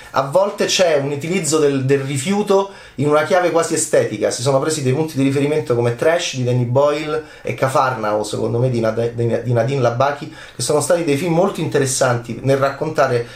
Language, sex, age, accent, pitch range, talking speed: Italian, male, 30-49, native, 125-170 Hz, 185 wpm